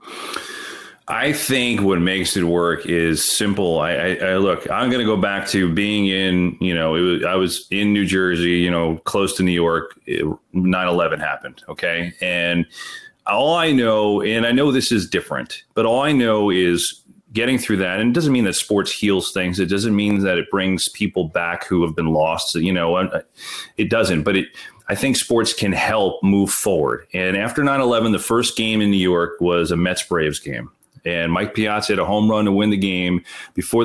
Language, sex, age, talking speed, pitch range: English, male, 30-49, 200 wpm, 90-105 Hz